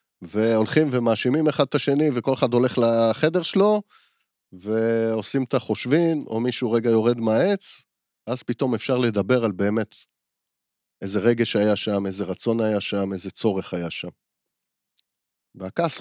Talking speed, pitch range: 140 wpm, 105-130 Hz